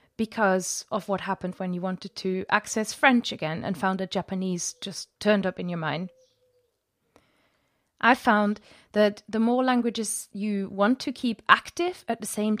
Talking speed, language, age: 165 wpm, English, 30-49